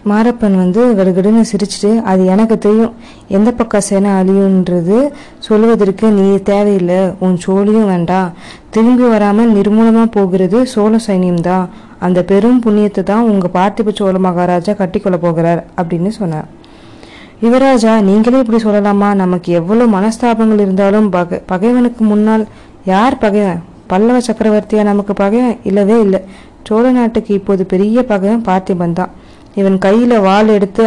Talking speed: 120 wpm